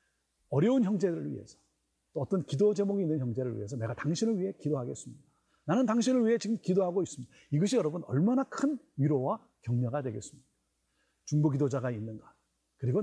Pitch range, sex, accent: 120-195 Hz, male, native